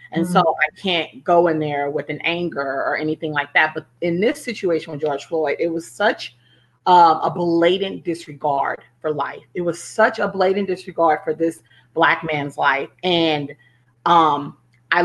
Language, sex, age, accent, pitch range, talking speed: English, female, 30-49, American, 155-190 Hz, 170 wpm